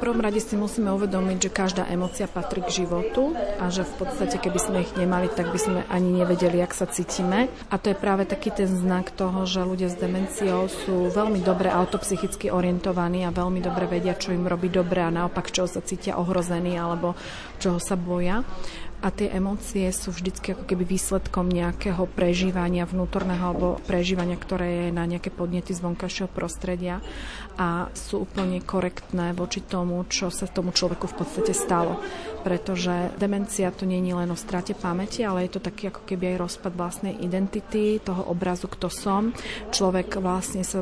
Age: 40-59